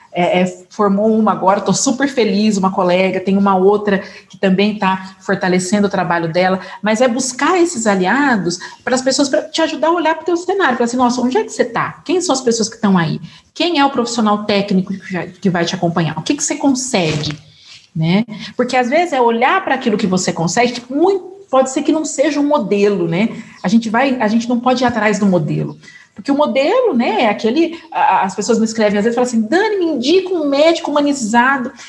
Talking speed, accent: 220 wpm, Brazilian